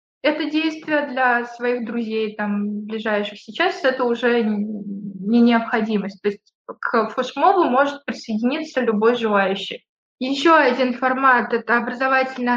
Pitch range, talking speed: 220-260 Hz, 125 wpm